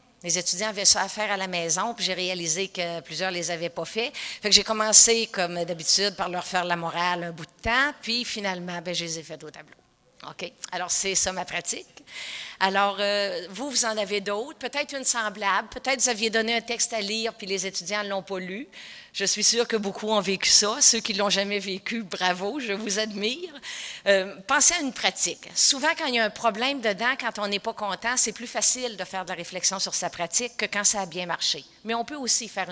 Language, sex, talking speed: French, female, 240 wpm